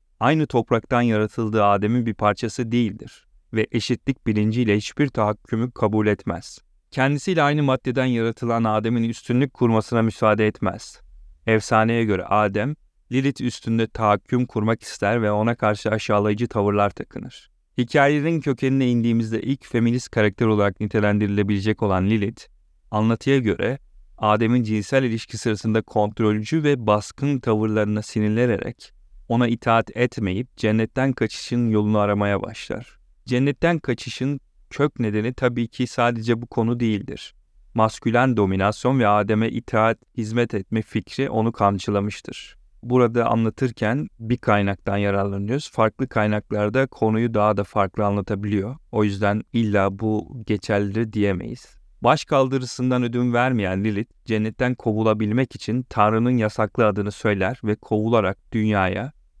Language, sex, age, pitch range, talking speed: Turkish, male, 30-49, 105-125 Hz, 120 wpm